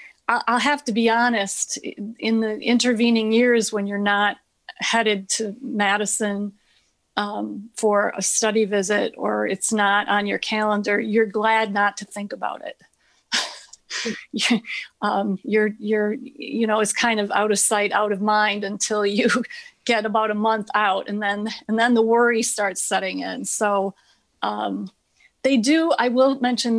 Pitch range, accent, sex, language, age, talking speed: 205-235 Hz, American, female, English, 40-59, 155 wpm